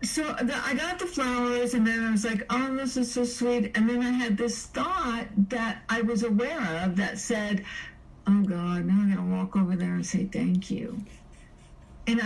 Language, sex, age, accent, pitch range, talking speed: English, female, 50-69, American, 190-235 Hz, 200 wpm